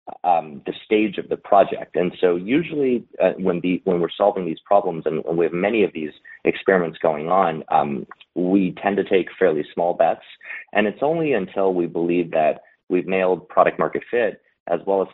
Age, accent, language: 30-49, American, English